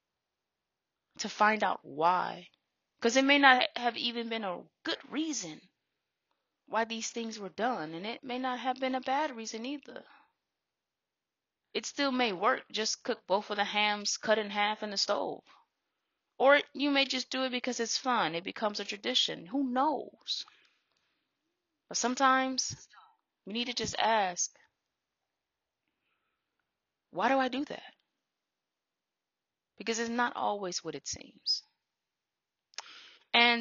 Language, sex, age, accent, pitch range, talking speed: English, female, 20-39, American, 200-280 Hz, 145 wpm